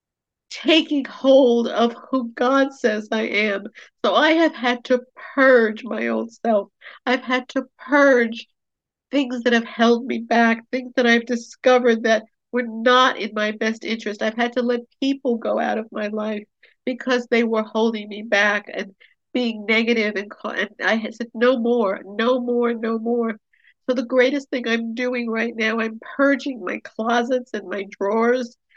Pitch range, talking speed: 215-250 Hz, 175 wpm